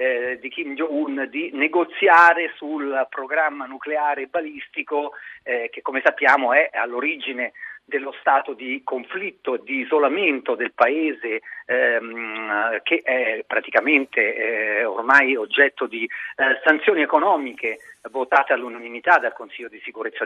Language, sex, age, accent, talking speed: Italian, male, 40-59, native, 120 wpm